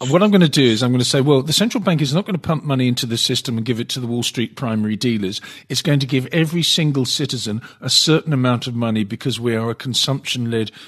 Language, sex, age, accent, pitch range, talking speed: English, male, 50-69, British, 115-140 Hz, 270 wpm